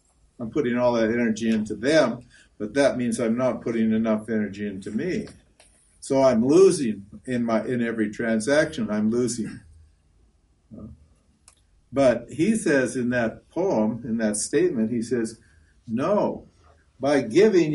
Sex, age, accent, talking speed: male, 60-79, American, 140 wpm